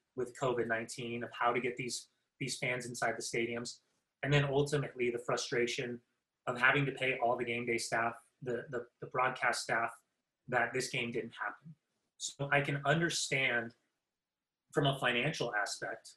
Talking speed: 165 wpm